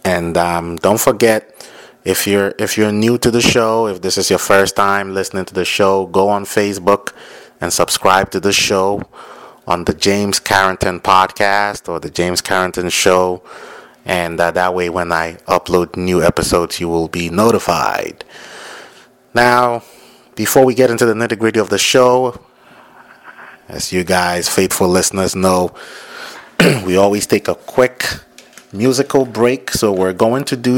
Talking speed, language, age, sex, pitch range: 160 wpm, English, 30-49, male, 90-115 Hz